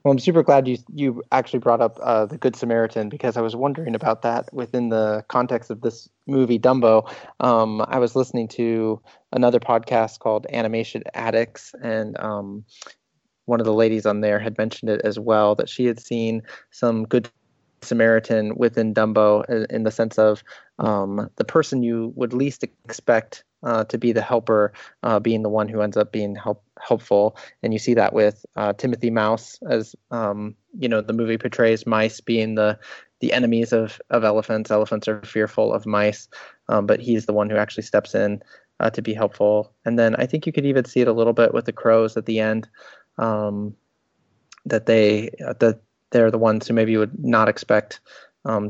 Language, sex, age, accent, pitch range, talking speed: English, male, 20-39, American, 105-120 Hz, 195 wpm